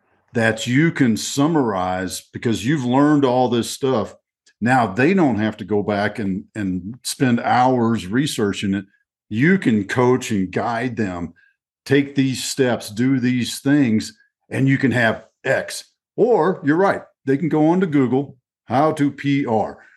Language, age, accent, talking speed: English, 50-69, American, 155 wpm